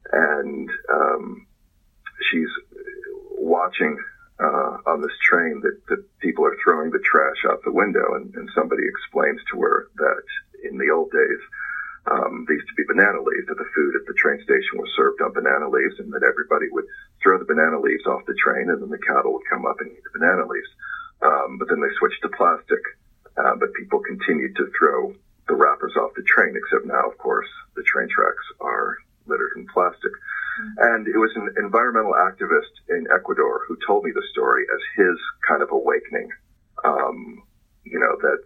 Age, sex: 40-59, male